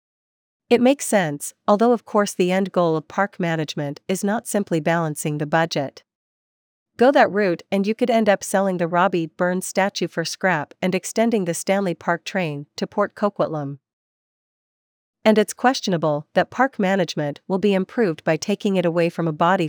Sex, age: female, 40-59